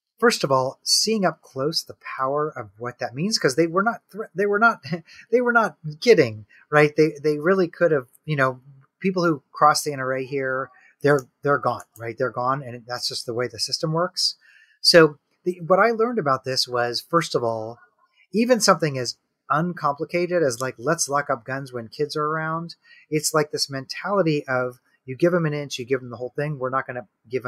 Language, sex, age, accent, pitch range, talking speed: English, male, 30-49, American, 130-180 Hz, 210 wpm